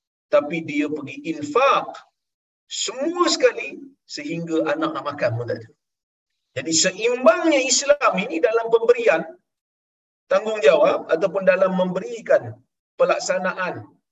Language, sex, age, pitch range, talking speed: Malayalam, male, 50-69, 185-300 Hz, 100 wpm